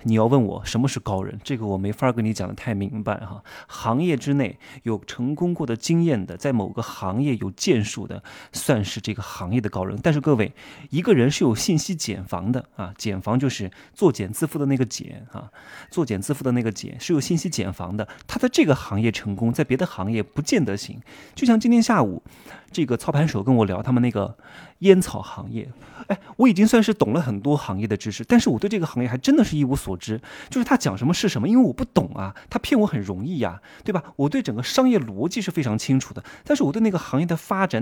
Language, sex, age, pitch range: Chinese, male, 20-39, 110-180 Hz